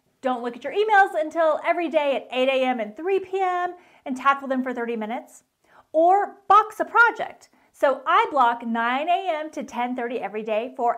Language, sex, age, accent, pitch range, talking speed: English, female, 30-49, American, 245-360 Hz, 185 wpm